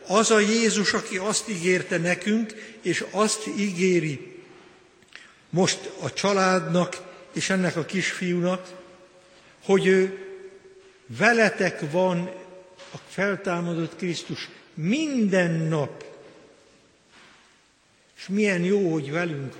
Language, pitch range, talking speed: Hungarian, 180-215 Hz, 95 wpm